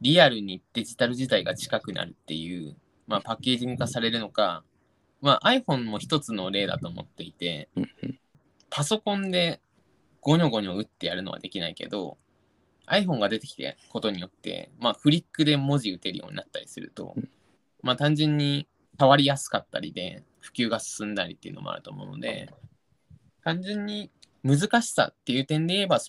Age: 20-39